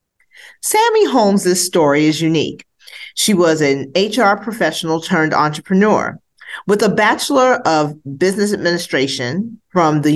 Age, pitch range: 40-59, 155-210 Hz